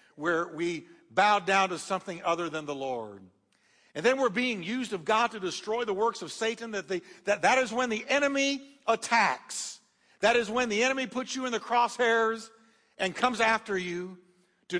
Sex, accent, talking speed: male, American, 190 wpm